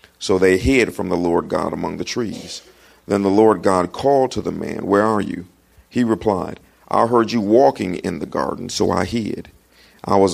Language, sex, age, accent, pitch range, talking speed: English, male, 40-59, American, 95-120 Hz, 205 wpm